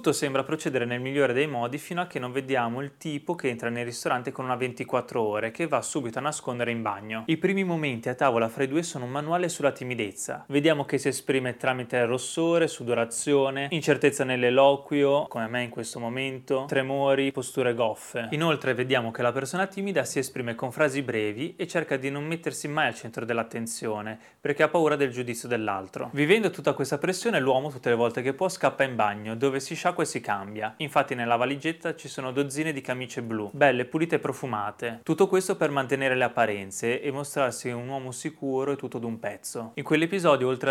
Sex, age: male, 20-39